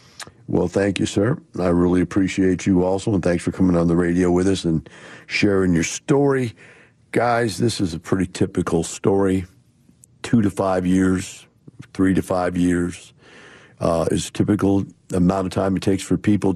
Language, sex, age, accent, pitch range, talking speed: English, male, 50-69, American, 85-100 Hz, 175 wpm